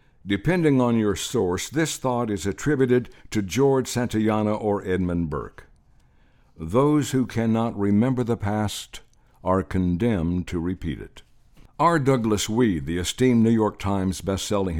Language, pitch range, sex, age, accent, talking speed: English, 90-120 Hz, male, 60-79, American, 140 wpm